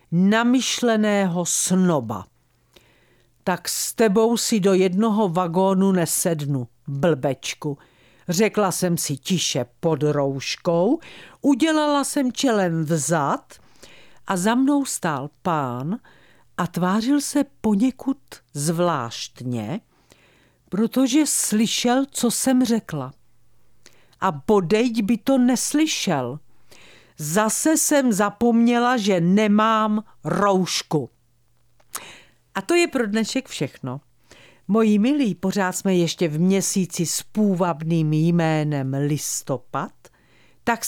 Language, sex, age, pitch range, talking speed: Czech, female, 50-69, 150-230 Hz, 95 wpm